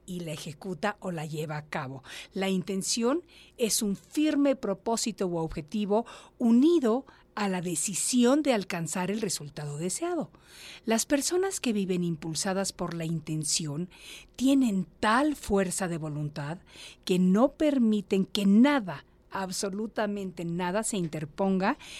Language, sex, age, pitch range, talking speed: Spanish, female, 50-69, 170-245 Hz, 130 wpm